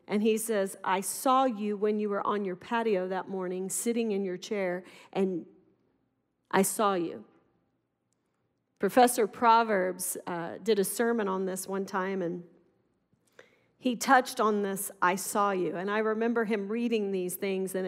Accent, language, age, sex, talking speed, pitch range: American, English, 40-59, female, 160 wpm, 190-240 Hz